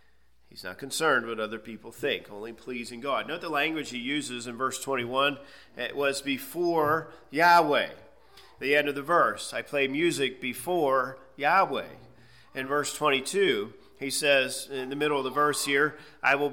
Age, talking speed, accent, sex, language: 40-59, 165 wpm, American, male, English